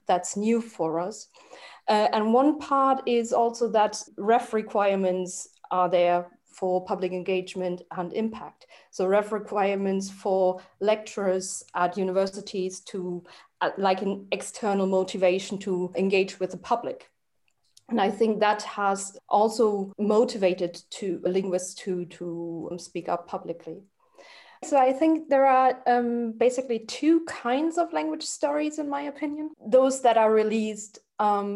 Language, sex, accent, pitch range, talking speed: English, female, German, 180-220 Hz, 140 wpm